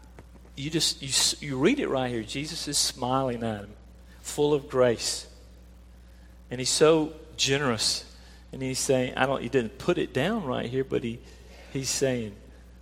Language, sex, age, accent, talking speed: English, male, 50-69, American, 170 wpm